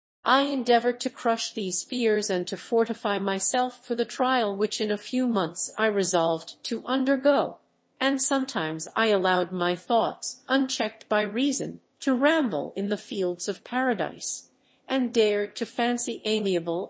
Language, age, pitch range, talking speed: English, 50-69, 185-255 Hz, 155 wpm